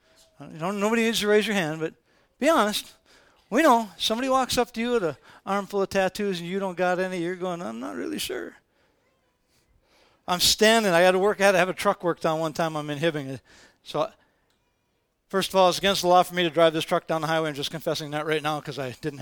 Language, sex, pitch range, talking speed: English, male, 155-200 Hz, 250 wpm